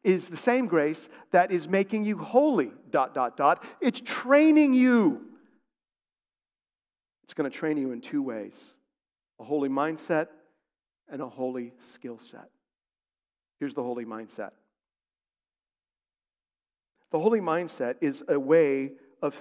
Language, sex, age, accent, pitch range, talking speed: English, male, 50-69, American, 145-210 Hz, 130 wpm